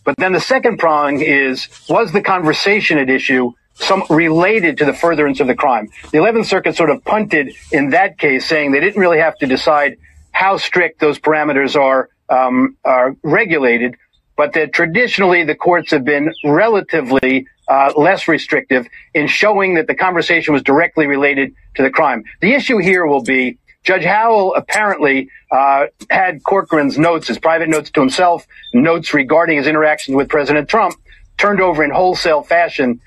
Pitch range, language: 140-200 Hz, English